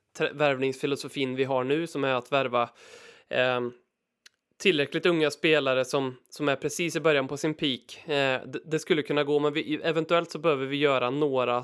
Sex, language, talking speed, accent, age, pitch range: male, Swedish, 165 wpm, native, 20-39, 130-165 Hz